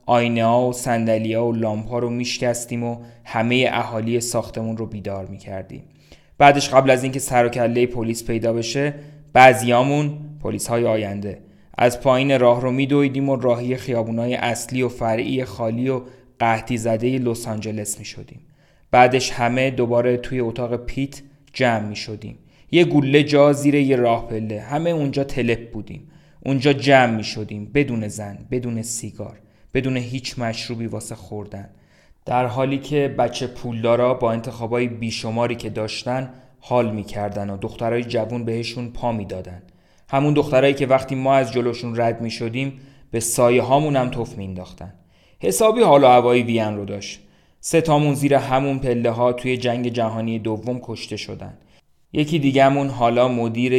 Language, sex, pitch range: Persian, male, 115-130 Hz